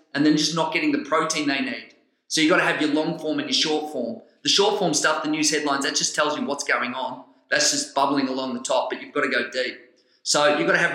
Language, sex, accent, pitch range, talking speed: English, male, Australian, 140-170 Hz, 285 wpm